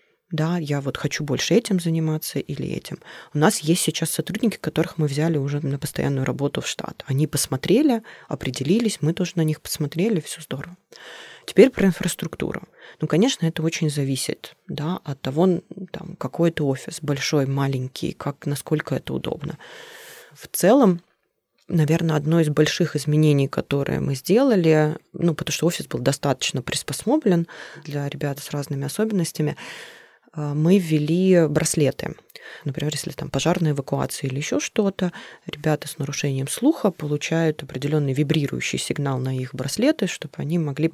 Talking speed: 145 wpm